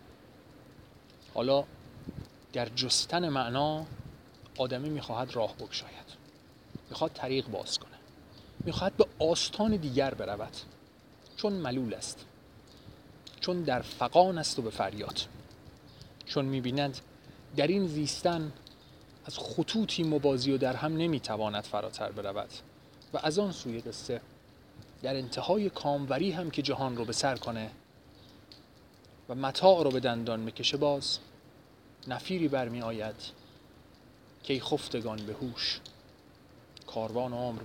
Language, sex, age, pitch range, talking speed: Persian, male, 40-59, 125-155 Hz, 115 wpm